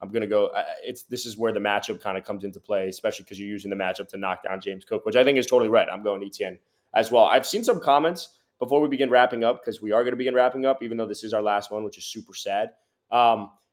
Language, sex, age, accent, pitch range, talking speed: English, male, 20-39, American, 115-150 Hz, 295 wpm